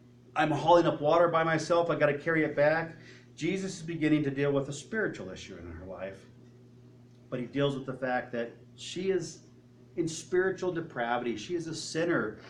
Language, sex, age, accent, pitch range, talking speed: English, male, 40-59, American, 120-175 Hz, 190 wpm